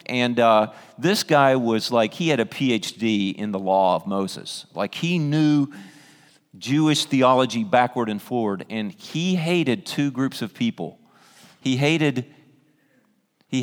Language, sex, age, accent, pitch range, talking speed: English, male, 40-59, American, 115-150 Hz, 145 wpm